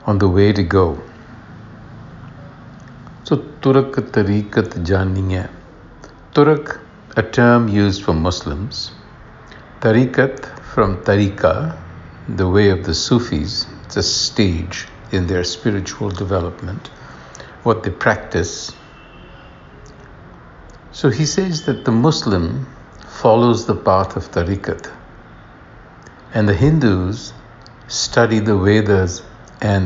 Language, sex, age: English, male, 60-79